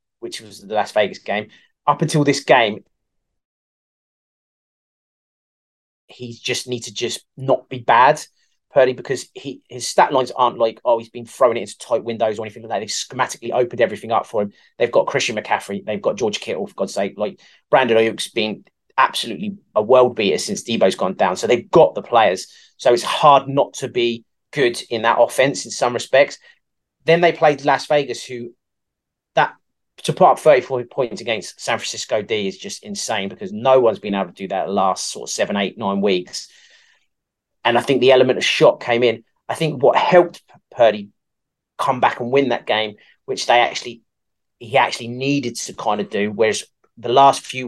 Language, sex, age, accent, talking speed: English, male, 30-49, British, 195 wpm